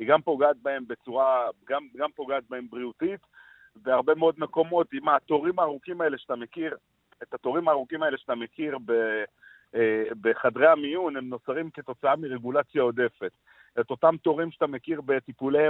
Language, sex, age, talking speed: Hebrew, male, 50-69, 145 wpm